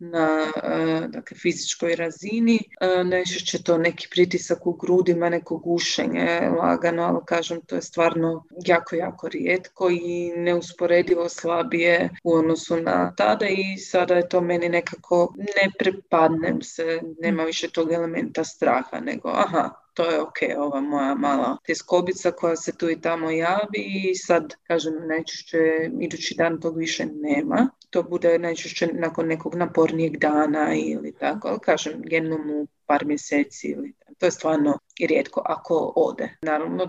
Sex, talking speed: female, 145 wpm